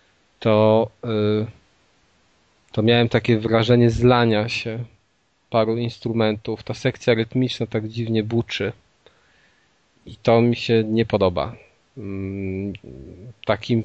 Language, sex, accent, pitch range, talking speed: Polish, male, native, 110-125 Hz, 95 wpm